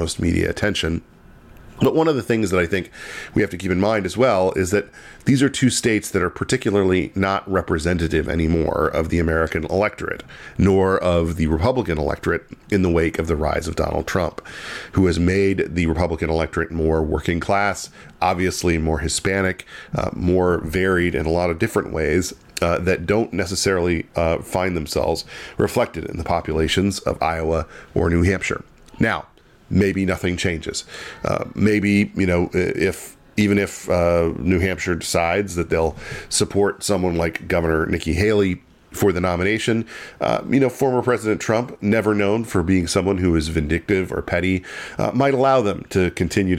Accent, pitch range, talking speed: American, 80-100 Hz, 170 wpm